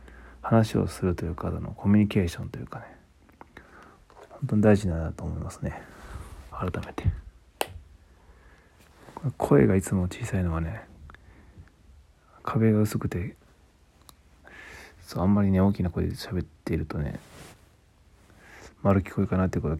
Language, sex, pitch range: Japanese, male, 80-105 Hz